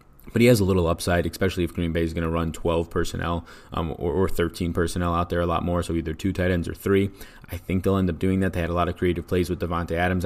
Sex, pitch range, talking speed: male, 85-95 Hz, 290 wpm